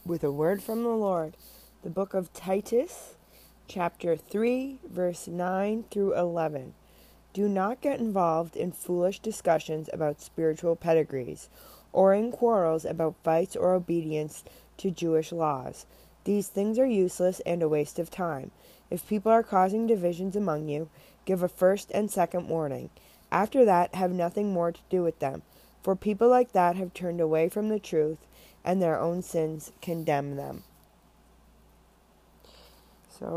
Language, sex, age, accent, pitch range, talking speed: English, female, 20-39, American, 160-190 Hz, 150 wpm